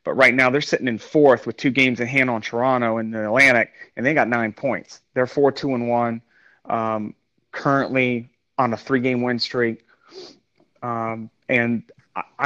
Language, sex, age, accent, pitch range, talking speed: English, male, 30-49, American, 115-130 Hz, 180 wpm